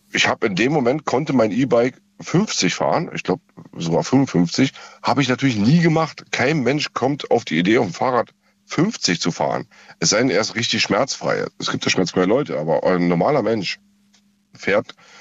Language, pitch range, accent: German, 100-165 Hz, German